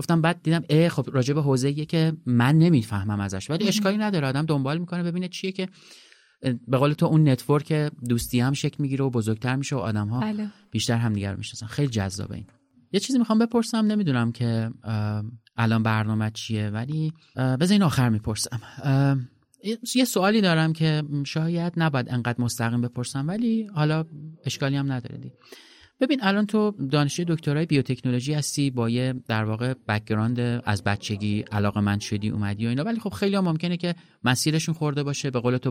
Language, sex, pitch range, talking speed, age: Persian, male, 115-160 Hz, 165 wpm, 30-49